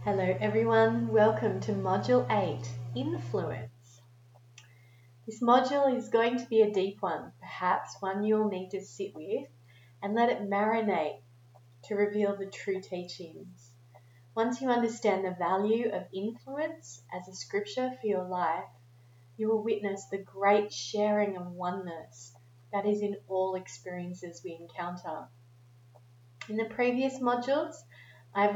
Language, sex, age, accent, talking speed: English, female, 30-49, Australian, 135 wpm